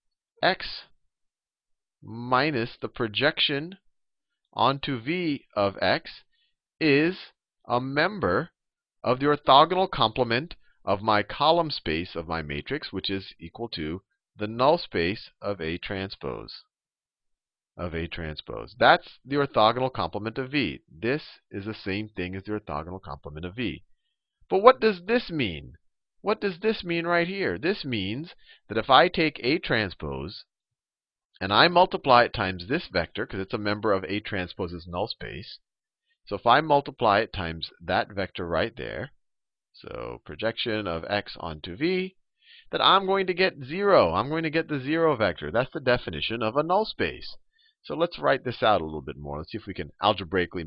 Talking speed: 165 wpm